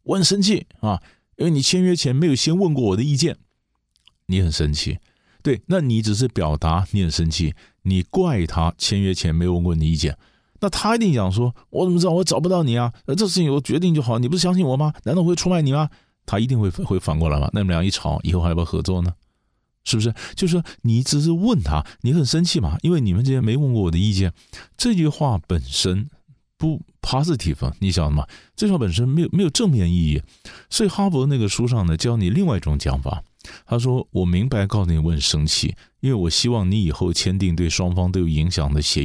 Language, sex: Chinese, male